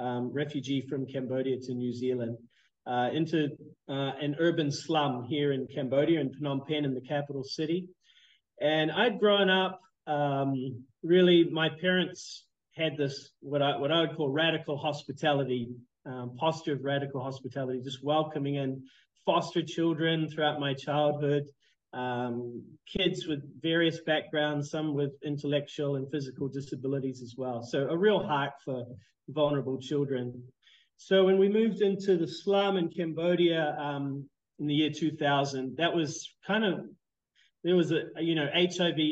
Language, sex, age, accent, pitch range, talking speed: English, male, 30-49, Australian, 135-160 Hz, 150 wpm